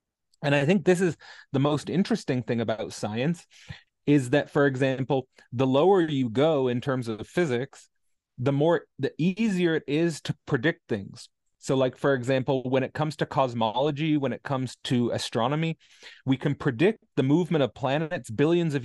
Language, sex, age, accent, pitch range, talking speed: English, male, 30-49, American, 125-155 Hz, 175 wpm